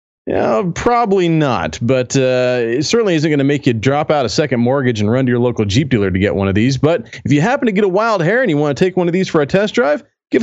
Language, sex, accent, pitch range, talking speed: English, male, American, 120-170 Hz, 295 wpm